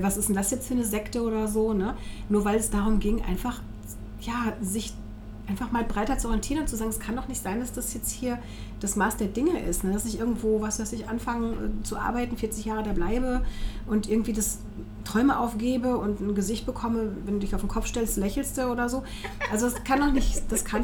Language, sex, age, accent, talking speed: German, female, 40-59, German, 235 wpm